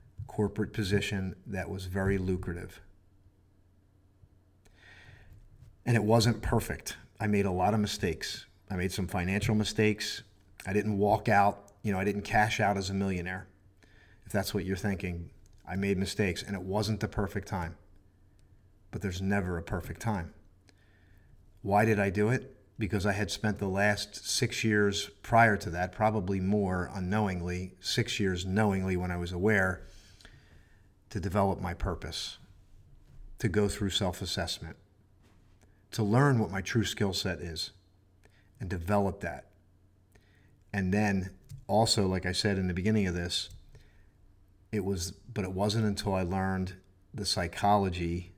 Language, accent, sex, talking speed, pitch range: English, American, male, 150 wpm, 95-105 Hz